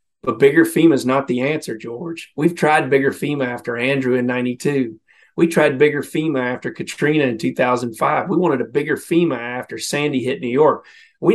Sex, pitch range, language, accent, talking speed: male, 120-145 Hz, English, American, 185 wpm